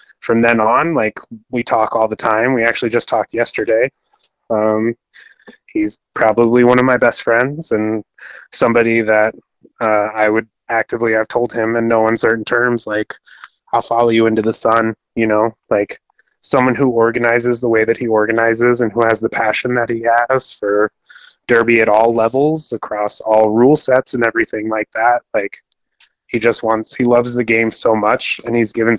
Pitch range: 110-125 Hz